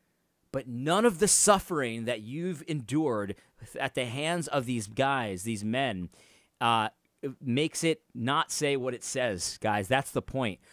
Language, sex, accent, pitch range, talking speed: English, male, American, 130-215 Hz, 155 wpm